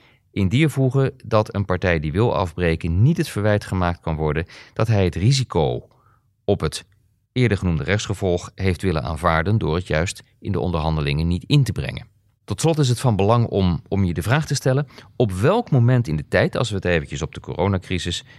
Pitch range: 85-120 Hz